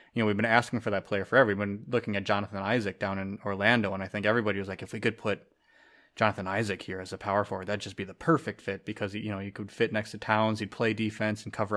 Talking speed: 280 wpm